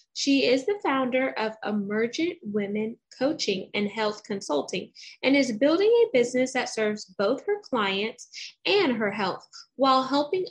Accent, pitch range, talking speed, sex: American, 205-275 Hz, 150 wpm, female